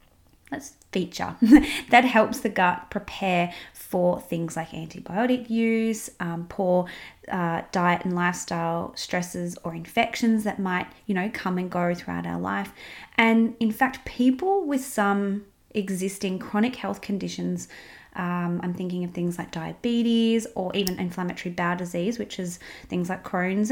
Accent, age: Australian, 20-39